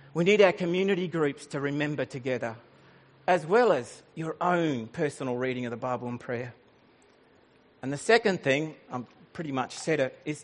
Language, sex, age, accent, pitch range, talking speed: English, male, 50-69, Australian, 130-170 Hz, 170 wpm